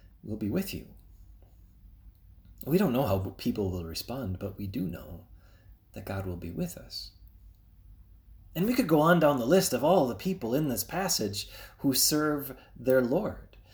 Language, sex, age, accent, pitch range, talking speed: English, male, 30-49, American, 95-140 Hz, 175 wpm